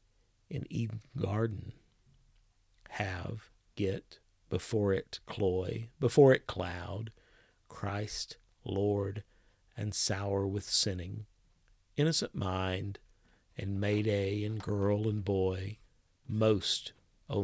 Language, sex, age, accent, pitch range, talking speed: English, male, 50-69, American, 95-135 Hz, 95 wpm